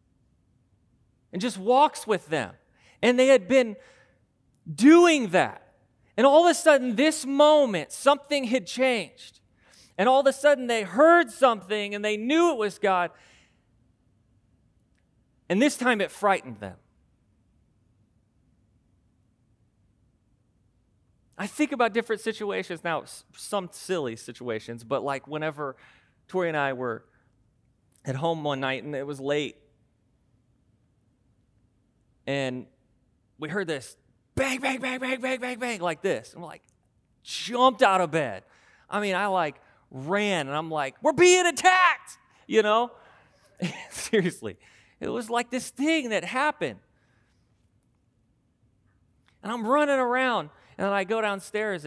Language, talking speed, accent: English, 135 wpm, American